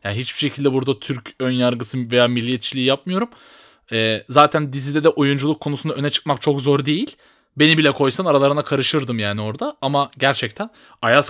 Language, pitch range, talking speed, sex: Turkish, 120-170 Hz, 160 wpm, male